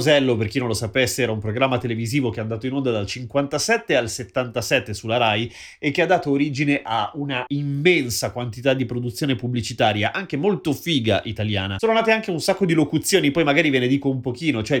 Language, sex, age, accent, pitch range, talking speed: Italian, male, 30-49, native, 115-145 Hz, 205 wpm